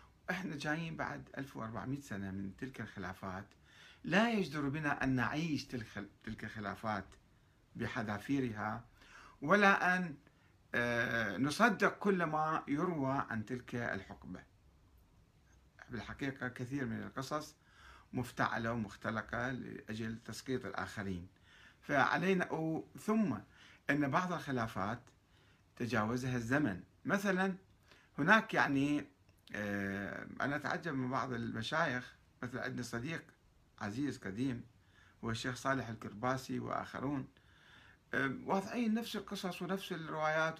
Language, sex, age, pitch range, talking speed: Arabic, male, 50-69, 105-145 Hz, 100 wpm